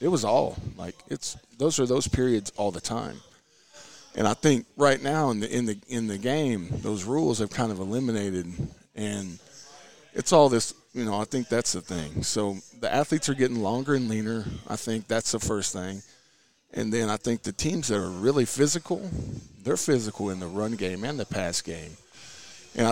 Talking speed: 210 wpm